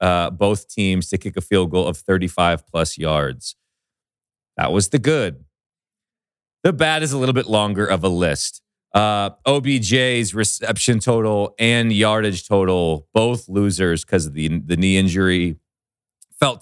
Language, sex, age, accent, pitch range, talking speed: English, male, 30-49, American, 85-105 Hz, 150 wpm